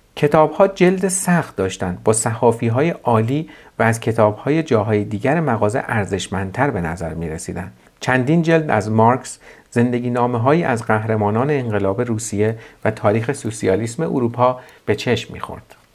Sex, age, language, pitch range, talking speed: male, 50-69, Persian, 110-155 Hz, 125 wpm